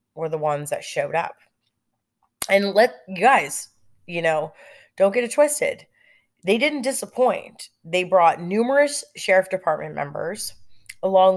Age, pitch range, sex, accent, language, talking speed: 30-49, 150-190 Hz, female, American, English, 135 wpm